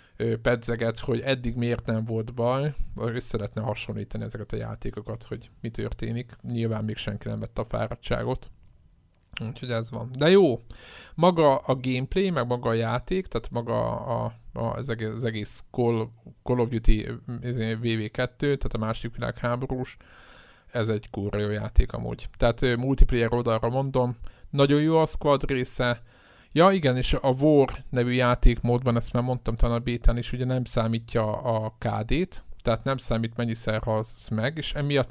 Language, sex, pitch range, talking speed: Hungarian, male, 110-125 Hz, 160 wpm